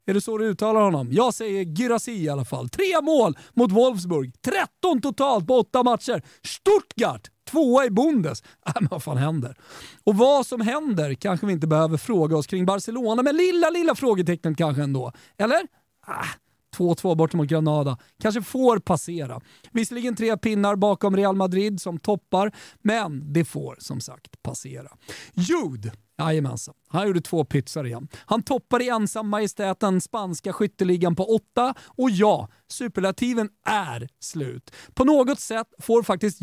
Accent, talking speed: native, 160 wpm